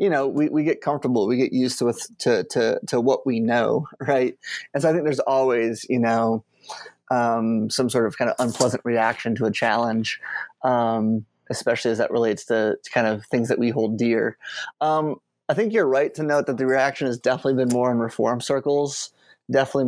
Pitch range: 120-140 Hz